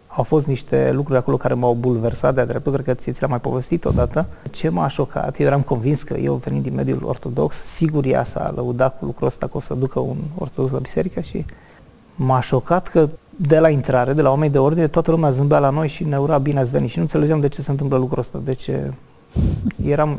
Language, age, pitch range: Romanian, 30-49, 130-155 Hz